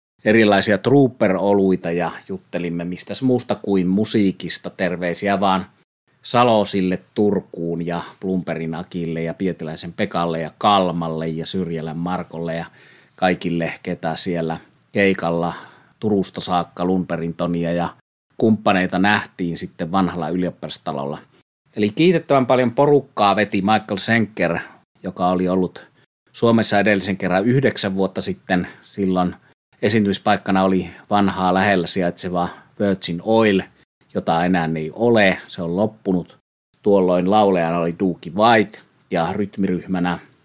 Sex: male